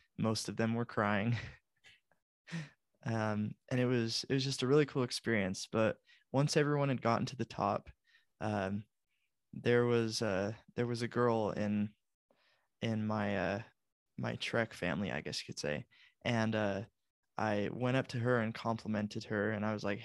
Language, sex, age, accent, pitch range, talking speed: English, male, 20-39, American, 110-150 Hz, 175 wpm